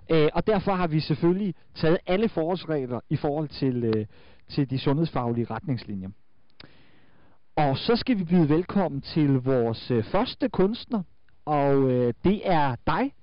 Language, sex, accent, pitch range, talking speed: Danish, male, native, 140-190 Hz, 145 wpm